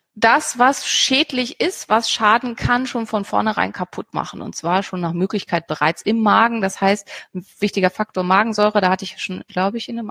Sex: female